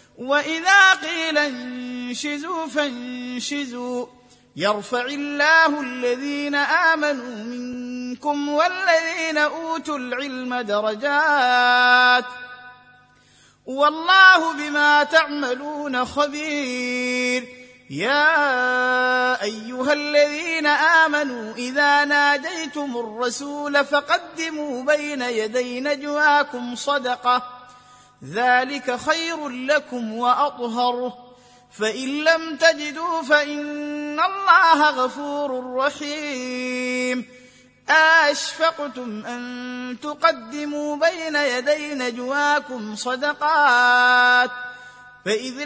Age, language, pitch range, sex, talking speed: 30-49, Arabic, 250-300 Hz, male, 65 wpm